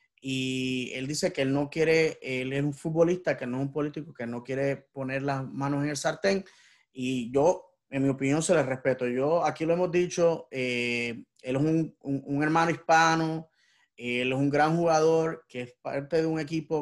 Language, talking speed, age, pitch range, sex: English, 215 wpm, 20-39, 130-155 Hz, male